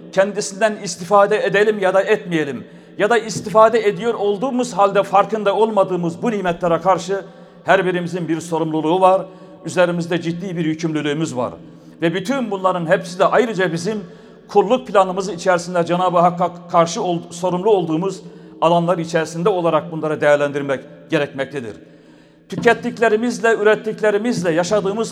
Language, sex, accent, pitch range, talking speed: Turkish, male, native, 175-210 Hz, 125 wpm